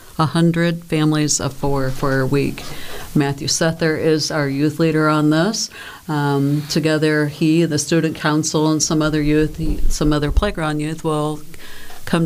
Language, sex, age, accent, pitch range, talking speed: English, female, 50-69, American, 145-160 Hz, 150 wpm